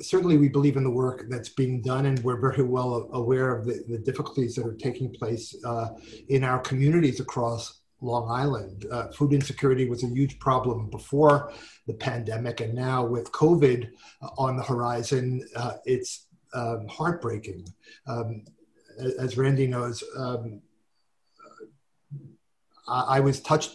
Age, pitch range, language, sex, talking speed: 50-69, 120-140 Hz, English, male, 145 wpm